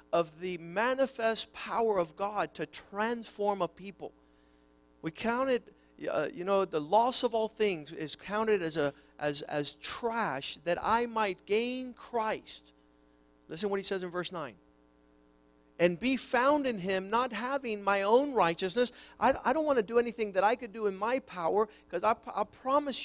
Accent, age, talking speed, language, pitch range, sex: American, 50-69, 175 wpm, English, 175-235 Hz, male